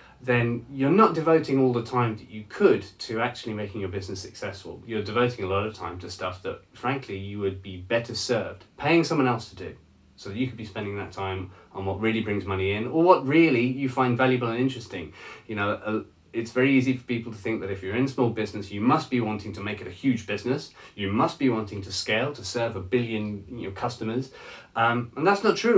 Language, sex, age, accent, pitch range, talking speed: English, male, 30-49, British, 100-130 Hz, 235 wpm